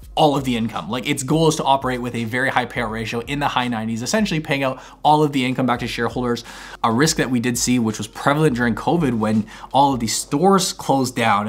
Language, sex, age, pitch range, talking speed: English, male, 20-39, 120-145 Hz, 250 wpm